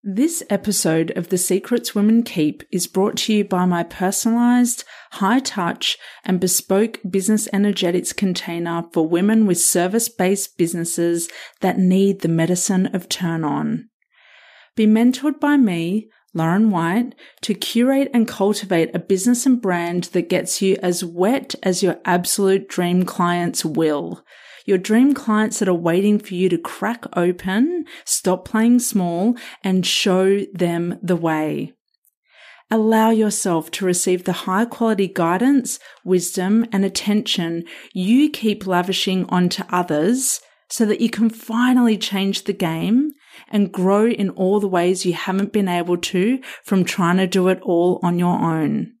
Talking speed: 145 wpm